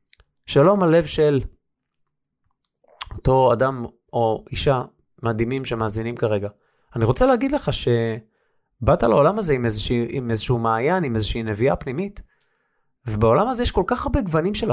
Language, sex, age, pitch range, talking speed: Hebrew, male, 20-39, 120-185 Hz, 130 wpm